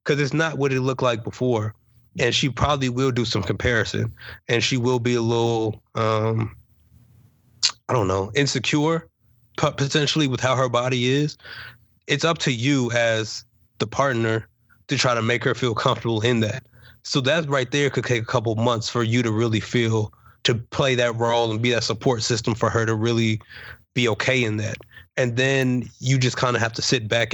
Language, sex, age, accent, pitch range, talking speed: English, male, 20-39, American, 115-130 Hz, 195 wpm